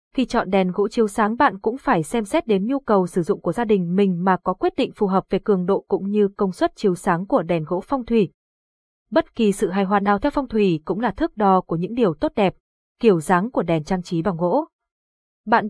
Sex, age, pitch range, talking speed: female, 20-39, 185-240 Hz, 255 wpm